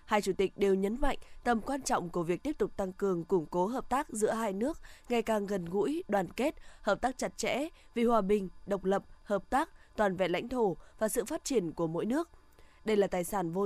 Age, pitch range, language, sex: 20-39, 195-250 Hz, Vietnamese, female